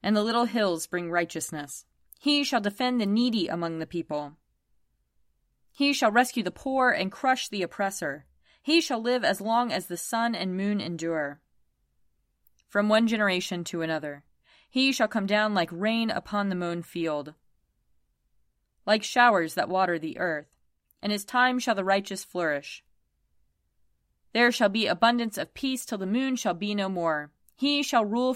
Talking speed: 165 wpm